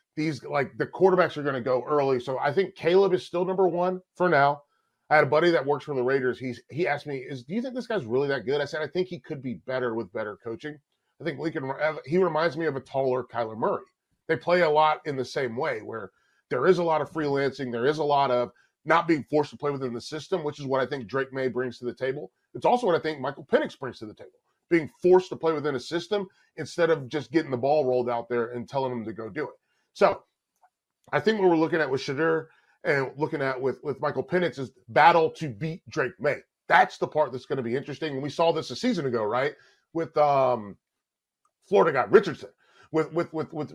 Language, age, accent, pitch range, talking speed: English, 30-49, American, 130-170 Hz, 250 wpm